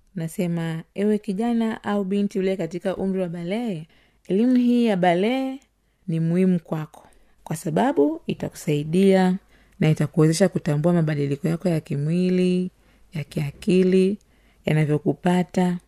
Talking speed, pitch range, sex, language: 115 wpm, 170-215 Hz, female, Swahili